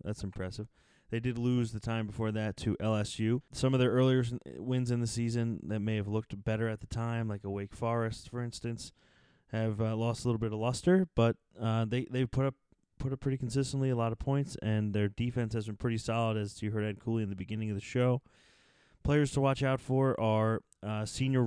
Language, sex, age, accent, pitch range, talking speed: English, male, 20-39, American, 105-120 Hz, 225 wpm